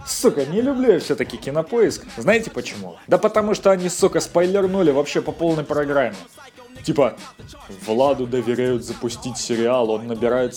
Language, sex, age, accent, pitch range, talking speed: Russian, male, 20-39, native, 125-175 Hz, 140 wpm